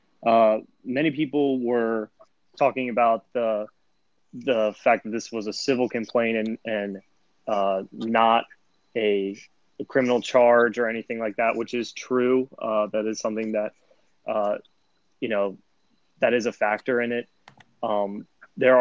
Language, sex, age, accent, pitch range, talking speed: English, male, 20-39, American, 110-120 Hz, 145 wpm